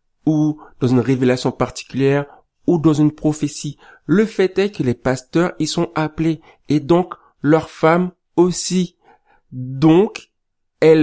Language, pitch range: French, 150-185 Hz